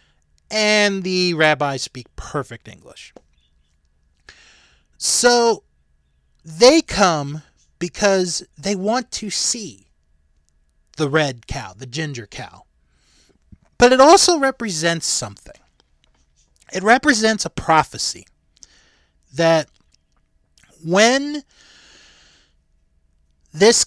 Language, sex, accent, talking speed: English, male, American, 80 wpm